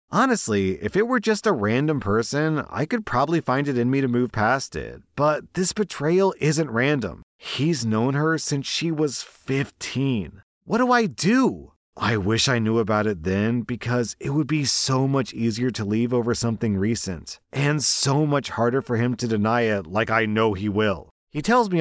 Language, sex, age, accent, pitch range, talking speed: English, male, 30-49, American, 100-135 Hz, 195 wpm